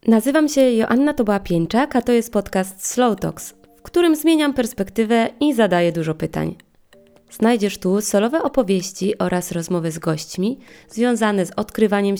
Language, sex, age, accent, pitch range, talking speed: Polish, female, 20-39, native, 170-245 Hz, 150 wpm